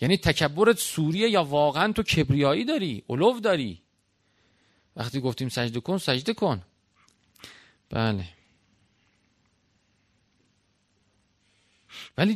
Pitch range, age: 100-135 Hz, 40-59